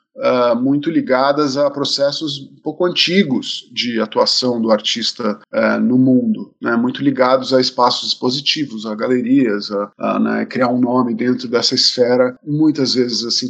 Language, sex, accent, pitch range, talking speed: Portuguese, male, Brazilian, 125-185 Hz, 150 wpm